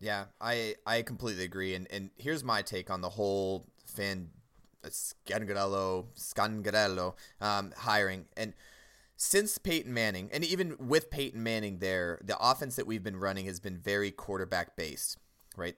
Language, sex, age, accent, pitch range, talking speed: English, male, 30-49, American, 95-115 Hz, 145 wpm